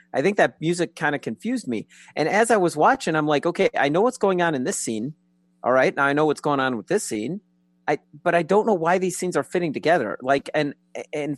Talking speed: 260 wpm